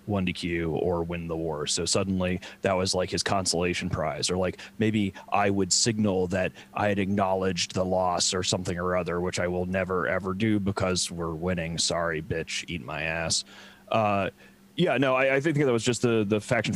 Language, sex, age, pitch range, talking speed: English, male, 30-49, 95-130 Hz, 200 wpm